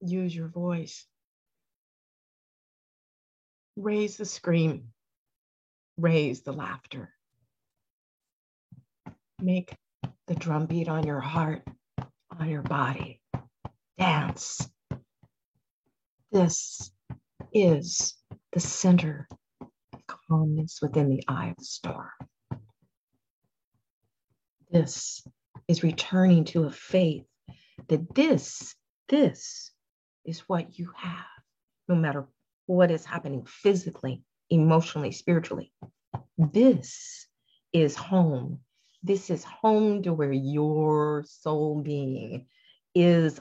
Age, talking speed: 50-69, 90 wpm